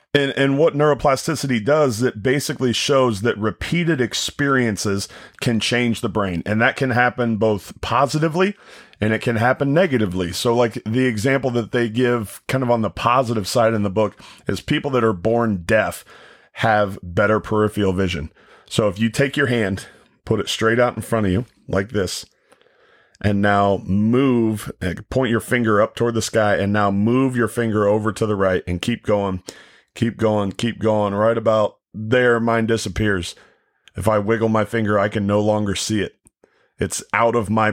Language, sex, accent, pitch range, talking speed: English, male, American, 105-120 Hz, 185 wpm